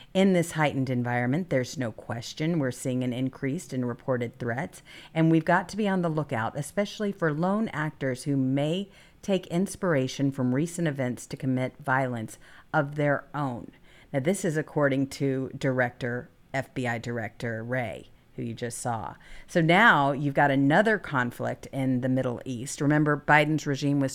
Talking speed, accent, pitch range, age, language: 165 wpm, American, 125-170 Hz, 50-69, English